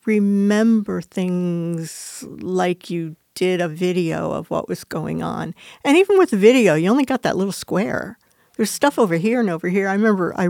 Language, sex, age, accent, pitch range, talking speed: English, female, 50-69, American, 170-205 Hz, 190 wpm